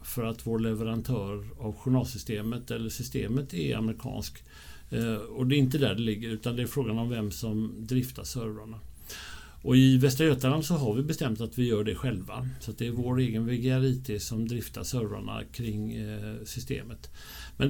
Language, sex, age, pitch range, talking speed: English, male, 60-79, 105-130 Hz, 180 wpm